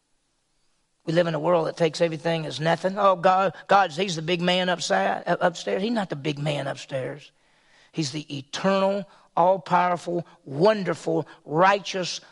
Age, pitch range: 40-59, 155-200 Hz